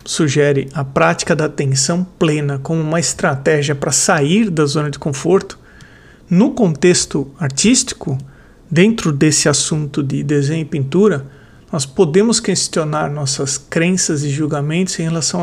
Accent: Brazilian